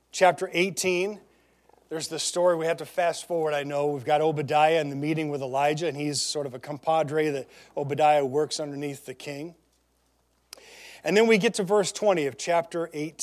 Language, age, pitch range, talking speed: English, 40-59, 140-190 Hz, 190 wpm